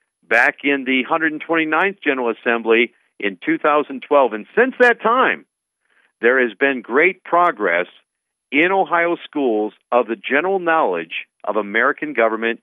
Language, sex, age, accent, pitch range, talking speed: English, male, 50-69, American, 120-170 Hz, 130 wpm